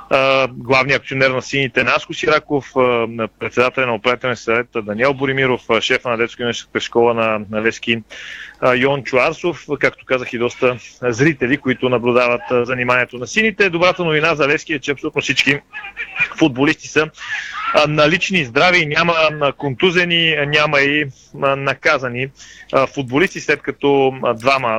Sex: male